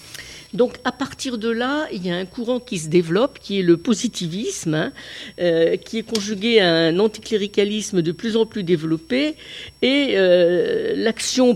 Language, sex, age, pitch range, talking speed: French, female, 50-69, 170-240 Hz, 170 wpm